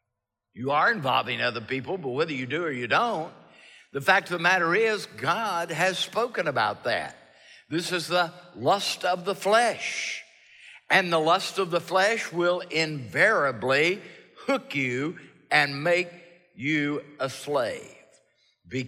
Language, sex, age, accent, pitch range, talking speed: English, male, 60-79, American, 140-185 Hz, 145 wpm